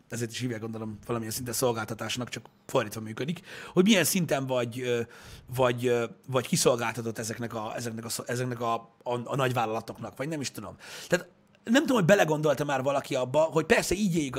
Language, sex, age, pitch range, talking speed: Hungarian, male, 30-49, 125-195 Hz, 175 wpm